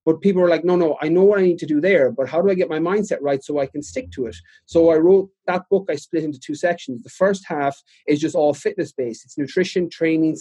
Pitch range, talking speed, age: 145-175 Hz, 275 wpm, 30-49